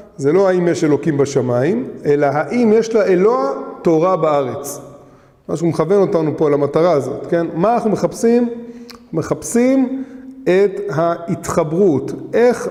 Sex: male